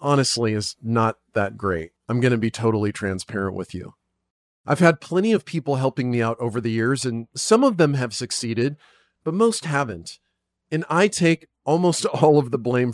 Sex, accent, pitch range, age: male, American, 120-165 Hz, 40-59